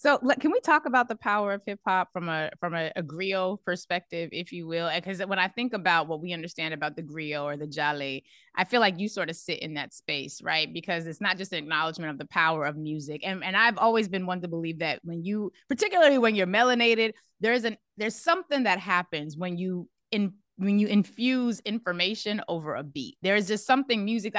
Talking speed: 225 wpm